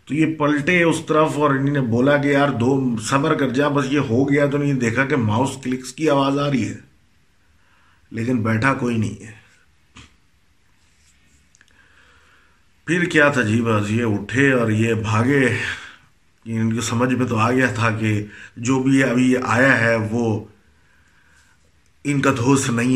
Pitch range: 100-125 Hz